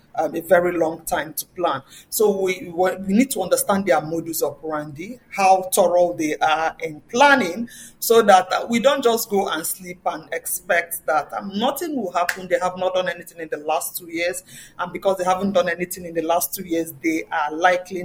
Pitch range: 165-205 Hz